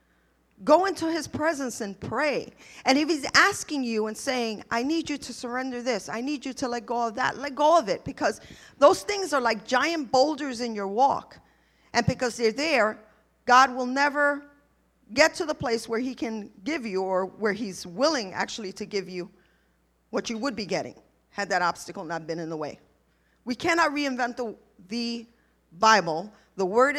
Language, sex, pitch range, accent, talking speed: English, female, 195-285 Hz, American, 190 wpm